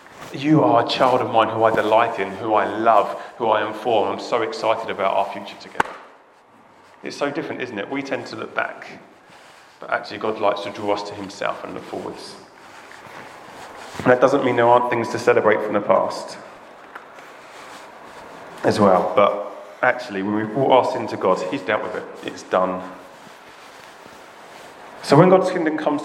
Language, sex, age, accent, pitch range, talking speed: English, male, 30-49, British, 115-160 Hz, 185 wpm